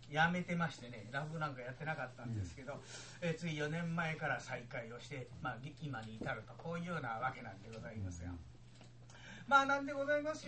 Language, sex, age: Japanese, male, 40-59